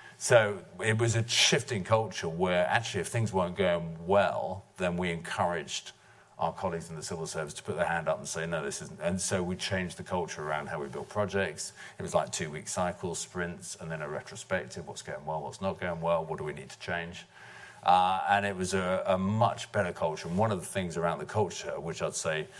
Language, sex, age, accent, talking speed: English, male, 50-69, British, 230 wpm